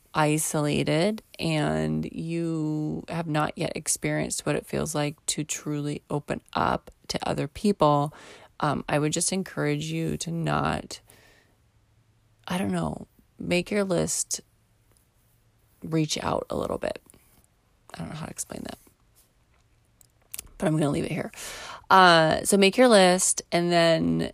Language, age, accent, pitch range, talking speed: English, 30-49, American, 150-175 Hz, 140 wpm